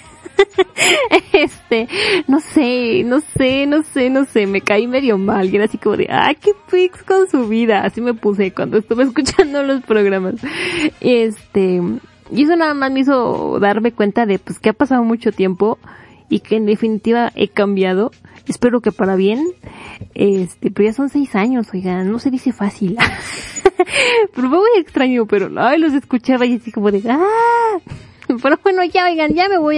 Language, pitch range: Spanish, 210-310 Hz